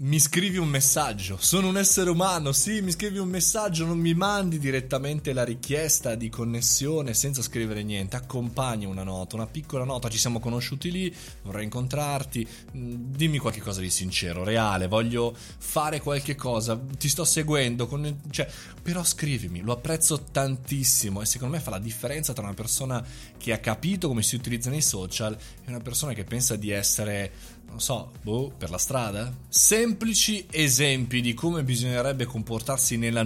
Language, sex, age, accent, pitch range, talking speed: Italian, male, 20-39, native, 110-150 Hz, 170 wpm